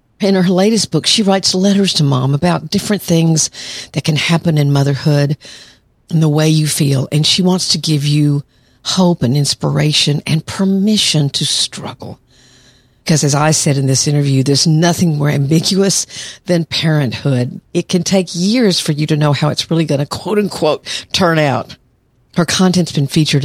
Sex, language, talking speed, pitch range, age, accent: female, English, 175 wpm, 140-175 Hz, 50-69, American